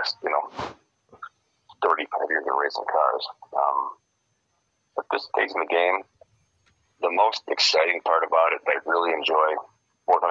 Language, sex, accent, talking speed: English, male, American, 165 wpm